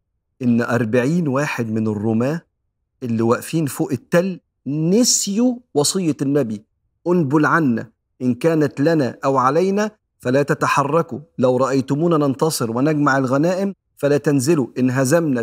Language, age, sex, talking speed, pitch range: Arabic, 50-69, male, 115 wpm, 130-175 Hz